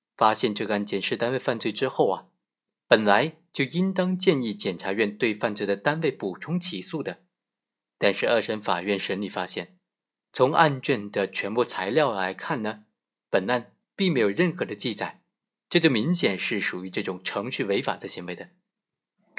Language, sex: Chinese, male